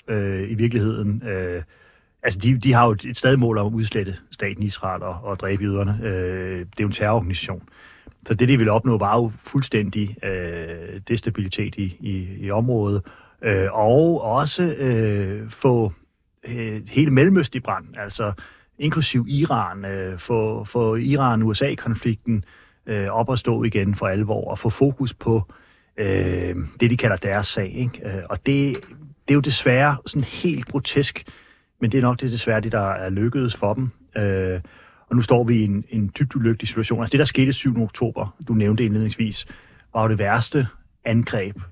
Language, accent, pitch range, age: Danish, native, 100-125 Hz, 30-49